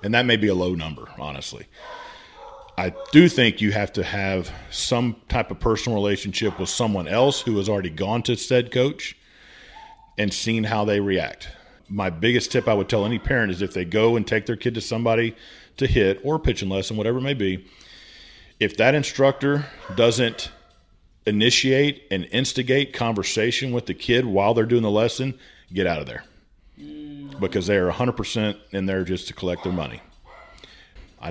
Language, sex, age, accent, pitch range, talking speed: English, male, 40-59, American, 95-125 Hz, 180 wpm